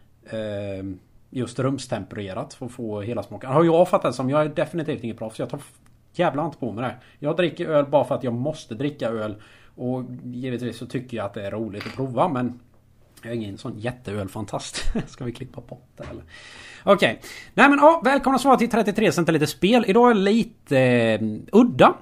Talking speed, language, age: 200 wpm, Swedish, 30-49